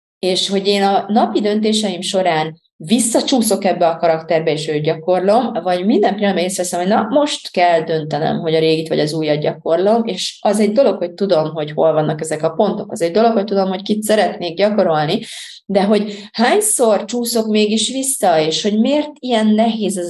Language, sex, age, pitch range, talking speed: Hungarian, female, 30-49, 160-210 Hz, 185 wpm